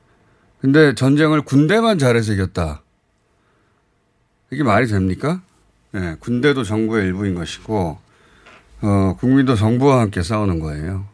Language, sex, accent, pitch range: Korean, male, native, 95-145 Hz